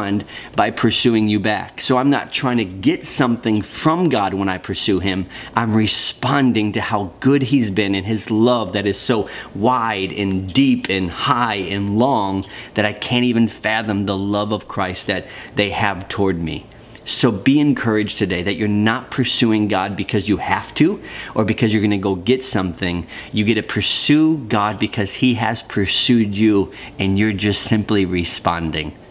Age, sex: 40-59, male